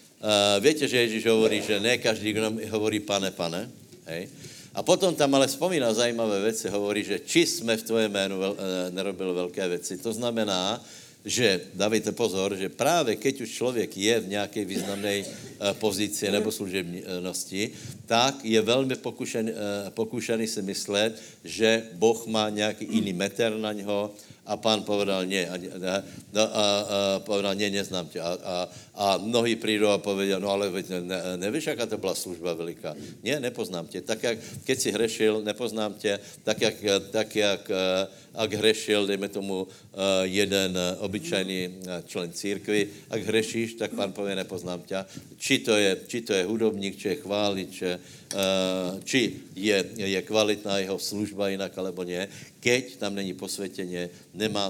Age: 70-89